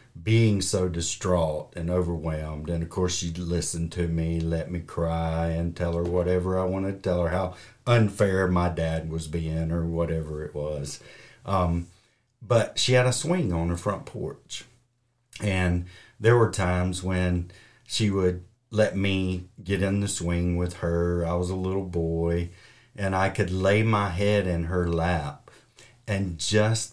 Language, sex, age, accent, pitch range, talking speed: English, male, 50-69, American, 85-115 Hz, 165 wpm